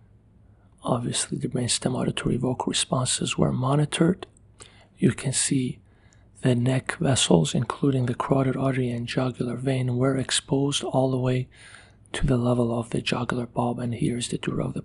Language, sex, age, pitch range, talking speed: Vietnamese, male, 40-59, 115-140 Hz, 160 wpm